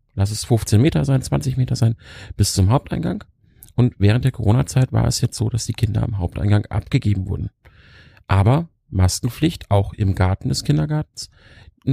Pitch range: 100-130 Hz